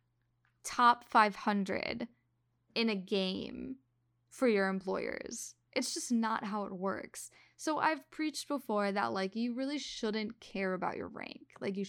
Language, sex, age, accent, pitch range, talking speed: English, female, 10-29, American, 195-250 Hz, 145 wpm